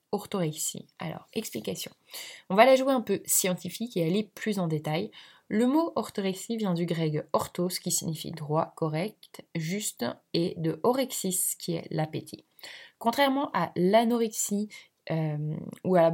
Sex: female